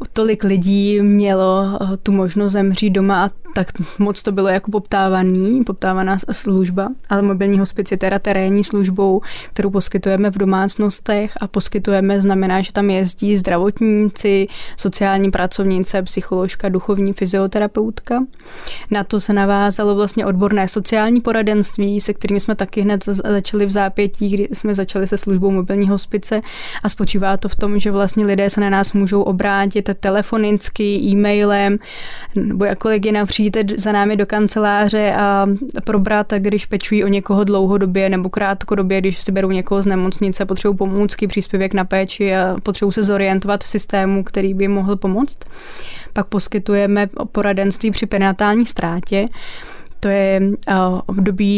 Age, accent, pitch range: 20-39, native, 195-210 Hz